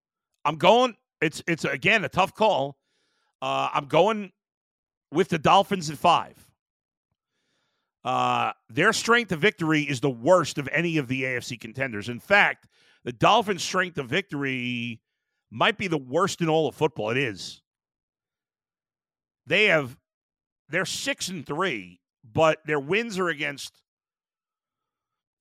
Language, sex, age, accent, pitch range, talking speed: English, male, 50-69, American, 145-185 Hz, 145 wpm